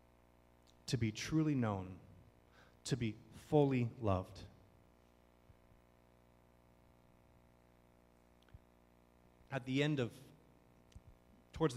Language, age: English, 30-49